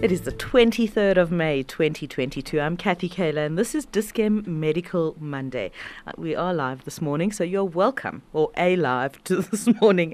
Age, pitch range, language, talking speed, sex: 40-59, 145-185 Hz, English, 185 wpm, female